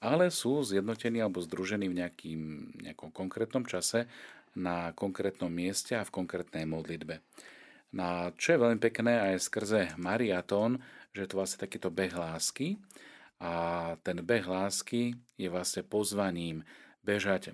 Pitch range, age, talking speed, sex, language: 90-105 Hz, 40-59, 135 wpm, male, Slovak